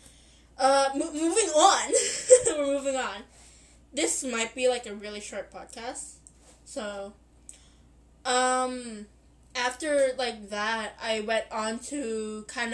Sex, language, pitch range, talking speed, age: female, English, 200-255 Hz, 120 wpm, 10-29